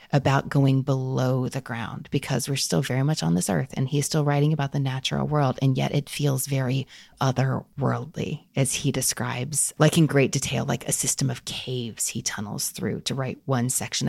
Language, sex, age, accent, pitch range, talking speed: English, female, 30-49, American, 130-155 Hz, 195 wpm